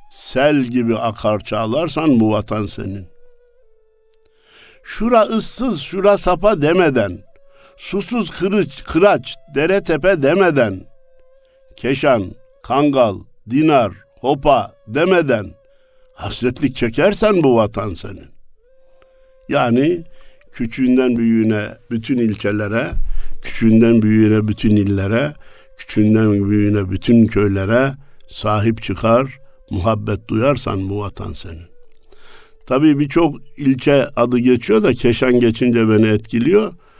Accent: native